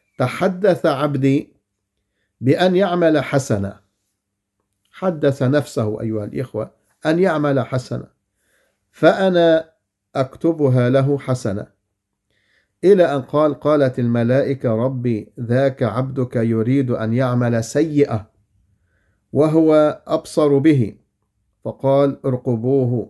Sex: male